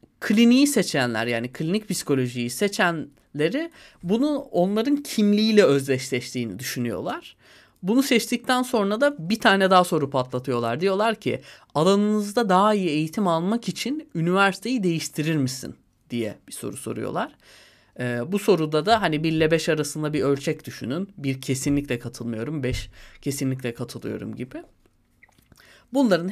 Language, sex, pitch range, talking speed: Turkish, male, 130-200 Hz, 125 wpm